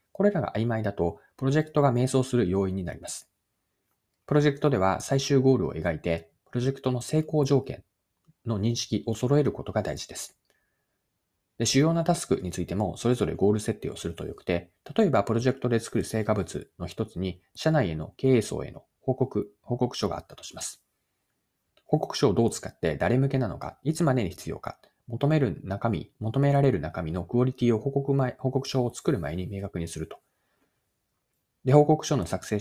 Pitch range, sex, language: 95-135 Hz, male, Japanese